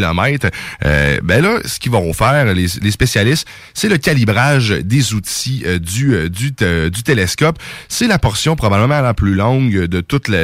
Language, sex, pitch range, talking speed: French, male, 95-135 Hz, 180 wpm